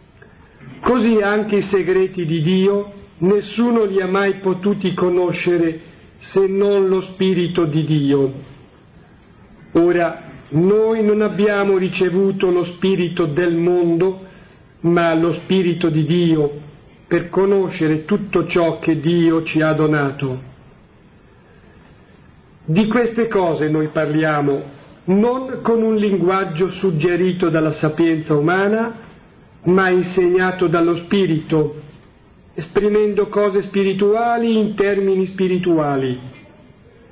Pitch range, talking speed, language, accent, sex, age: 160-200 Hz, 105 wpm, Italian, native, male, 50-69